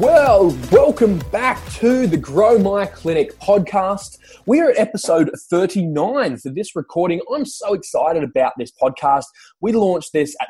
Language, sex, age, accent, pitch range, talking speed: English, male, 20-39, Australian, 125-195 Hz, 155 wpm